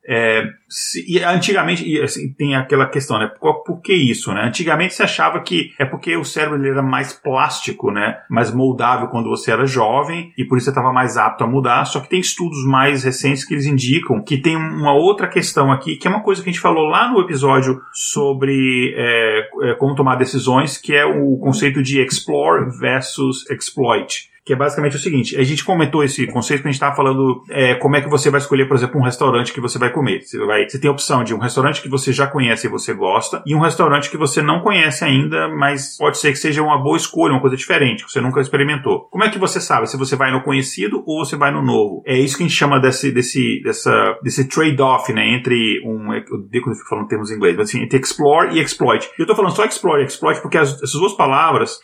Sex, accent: male, Brazilian